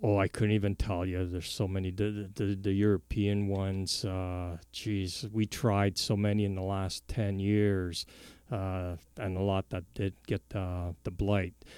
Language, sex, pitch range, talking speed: English, male, 95-105 Hz, 180 wpm